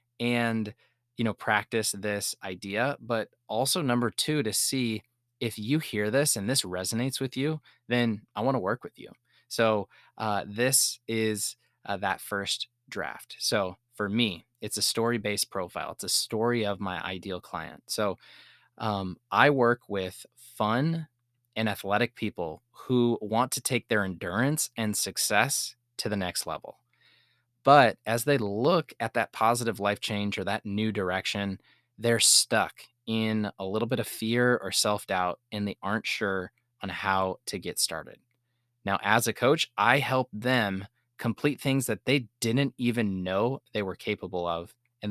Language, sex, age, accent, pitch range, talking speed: English, male, 20-39, American, 100-120 Hz, 165 wpm